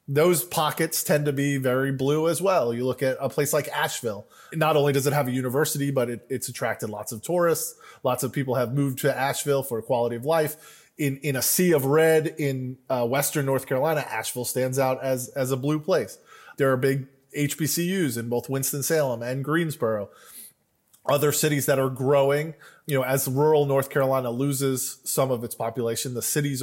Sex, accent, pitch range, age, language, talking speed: male, American, 130-150 Hz, 20-39, English, 195 wpm